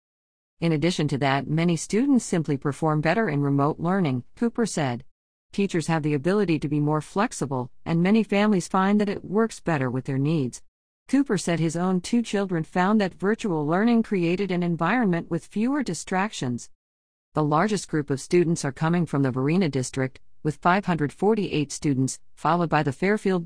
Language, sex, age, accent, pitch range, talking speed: English, female, 50-69, American, 145-200 Hz, 170 wpm